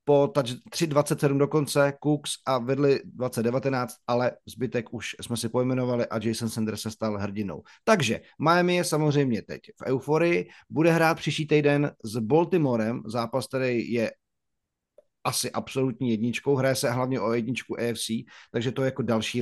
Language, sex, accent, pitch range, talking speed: Czech, male, native, 115-140 Hz, 150 wpm